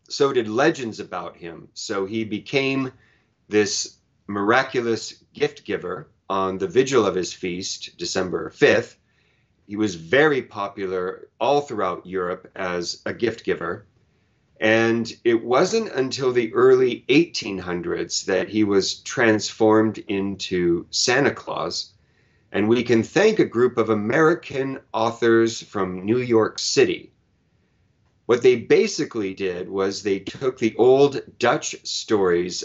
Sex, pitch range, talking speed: male, 105-135 Hz, 125 wpm